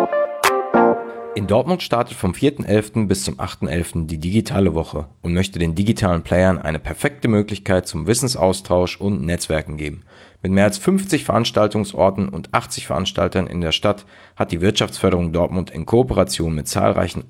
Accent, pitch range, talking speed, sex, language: German, 85-110 Hz, 150 wpm, male, German